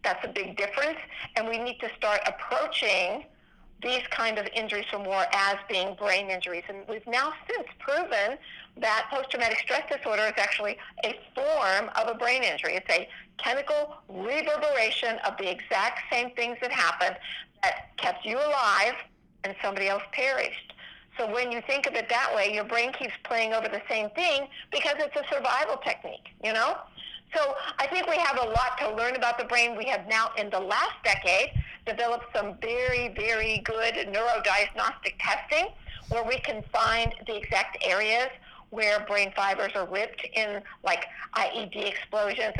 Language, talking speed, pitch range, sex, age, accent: English, 170 wpm, 205-255 Hz, female, 50-69, American